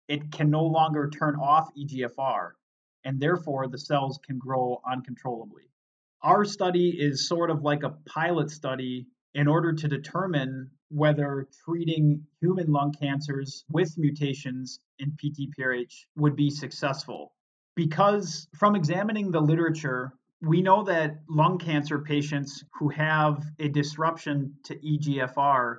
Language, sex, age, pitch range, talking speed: English, male, 30-49, 135-160 Hz, 130 wpm